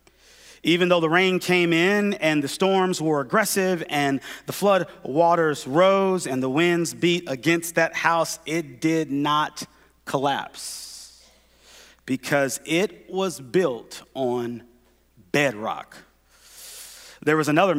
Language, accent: English, American